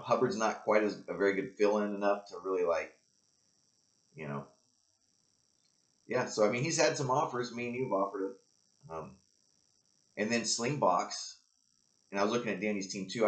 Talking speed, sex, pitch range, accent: 180 wpm, male, 100-130 Hz, American